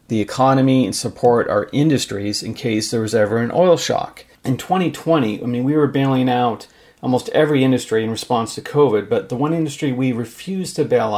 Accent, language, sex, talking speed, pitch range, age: American, English, male, 200 wpm, 120-145 Hz, 40-59